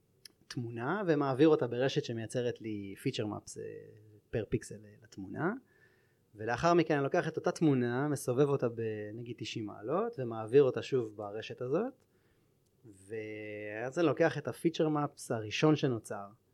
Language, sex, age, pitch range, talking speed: Hebrew, male, 30-49, 110-140 Hz, 130 wpm